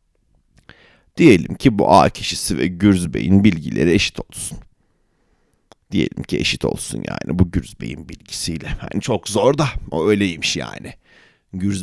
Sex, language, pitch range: male, Turkish, 80-105 Hz